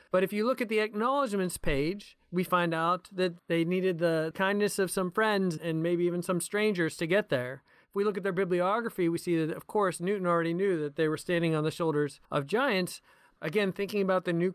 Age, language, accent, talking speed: 40-59, English, American, 225 wpm